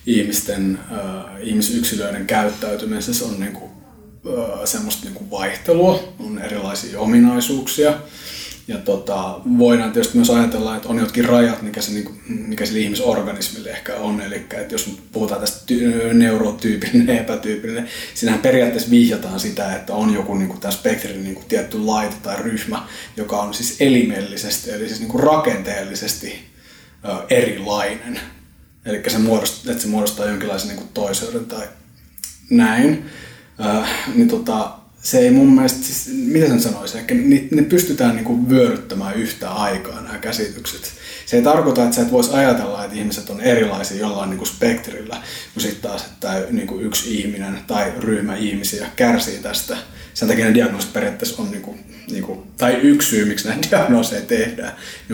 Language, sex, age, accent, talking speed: Finnish, male, 30-49, native, 150 wpm